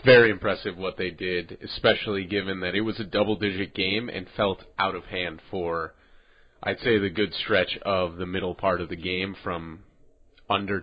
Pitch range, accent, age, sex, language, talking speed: 90-110 Hz, American, 30-49, male, English, 185 wpm